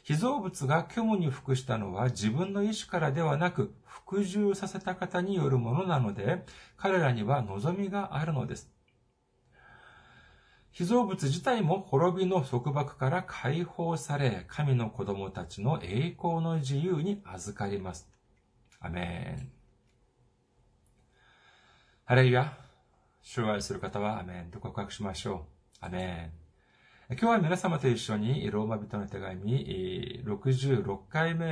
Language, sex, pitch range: Japanese, male, 105-165 Hz